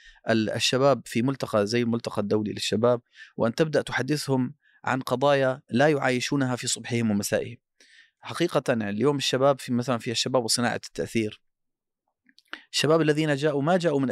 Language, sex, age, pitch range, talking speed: Arabic, male, 30-49, 115-145 Hz, 135 wpm